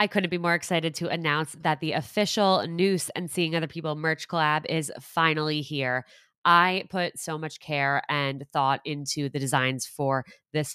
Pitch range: 130-150 Hz